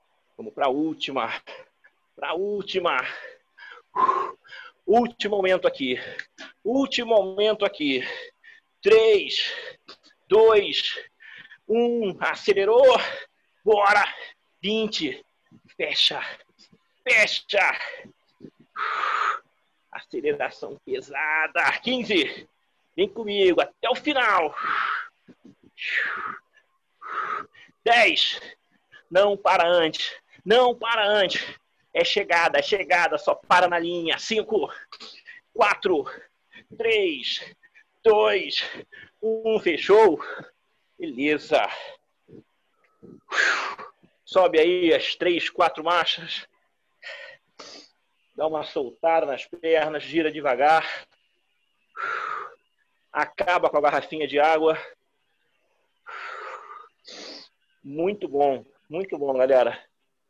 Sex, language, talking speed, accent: male, Portuguese, 75 wpm, Brazilian